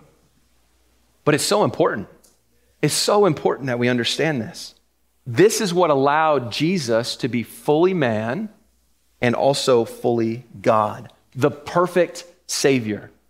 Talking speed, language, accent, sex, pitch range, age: 120 wpm, English, American, male, 130-165 Hz, 30-49